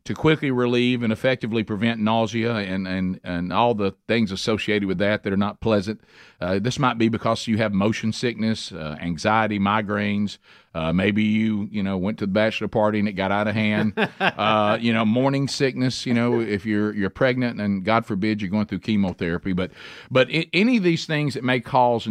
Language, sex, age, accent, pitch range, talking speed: English, male, 50-69, American, 100-130 Hz, 205 wpm